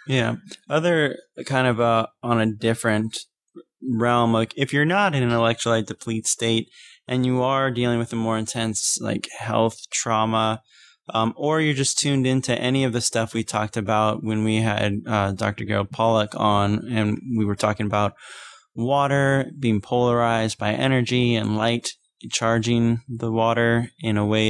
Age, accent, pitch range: 20-39, American, 105-125 Hz